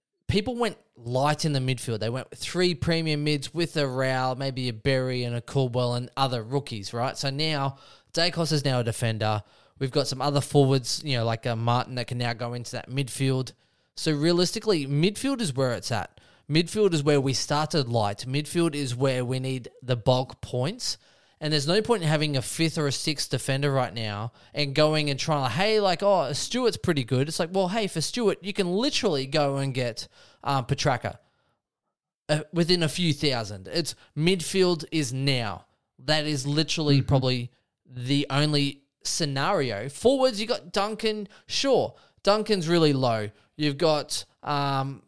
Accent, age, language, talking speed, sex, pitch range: Australian, 20-39, English, 180 wpm, male, 130-165 Hz